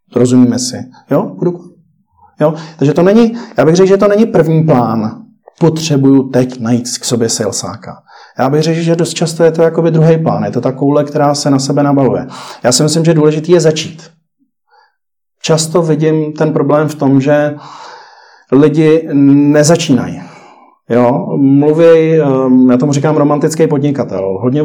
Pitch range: 130-160 Hz